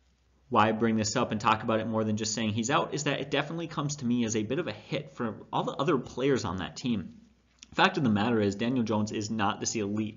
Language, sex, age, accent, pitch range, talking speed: English, male, 30-49, American, 105-130 Hz, 275 wpm